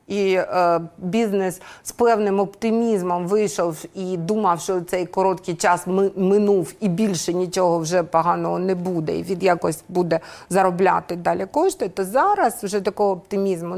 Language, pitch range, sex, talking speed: Ukrainian, 170-215 Hz, female, 150 wpm